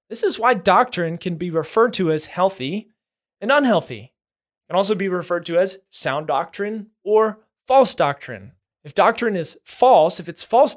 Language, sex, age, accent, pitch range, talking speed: English, male, 20-39, American, 185-235 Hz, 175 wpm